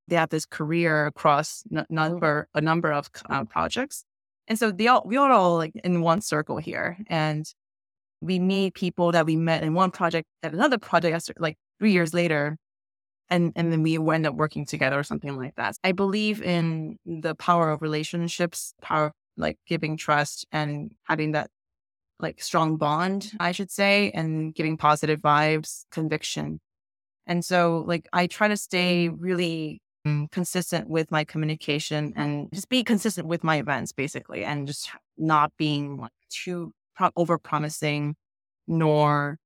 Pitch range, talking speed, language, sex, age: 150-175 Hz, 165 wpm, English, female, 20-39